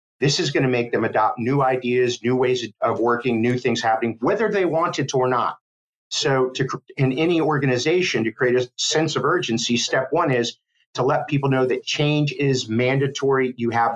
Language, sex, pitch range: English, male, 120-150 Hz